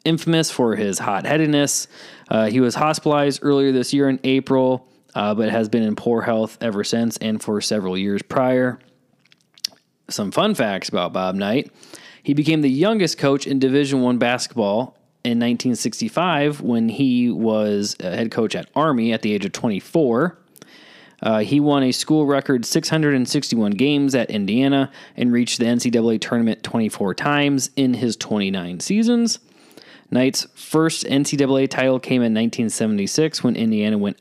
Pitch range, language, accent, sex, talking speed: 115-145 Hz, English, American, male, 150 wpm